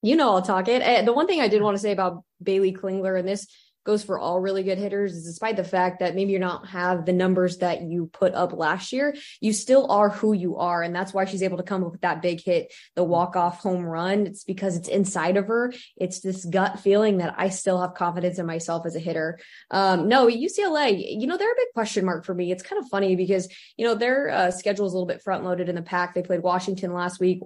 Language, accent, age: English, American, 20-39